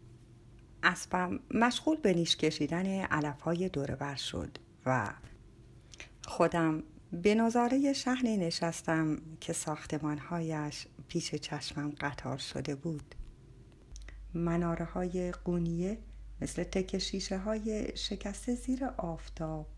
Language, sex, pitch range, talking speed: Persian, female, 155-215 Hz, 95 wpm